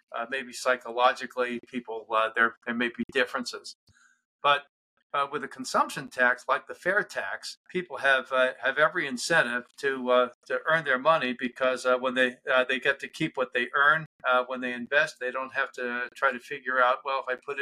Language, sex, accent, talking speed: English, male, American, 205 wpm